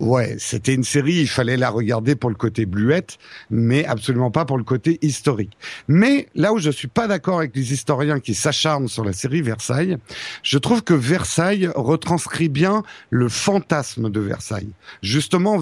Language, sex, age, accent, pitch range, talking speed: French, male, 50-69, French, 120-170 Hz, 175 wpm